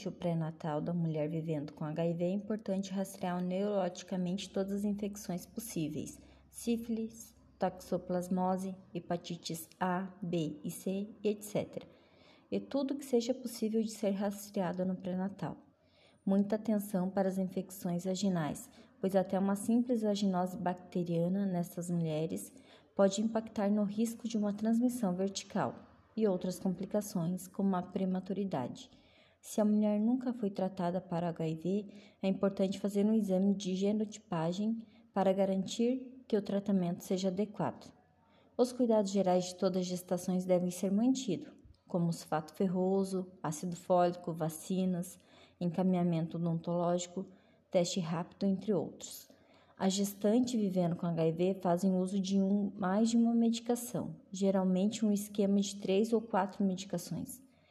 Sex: female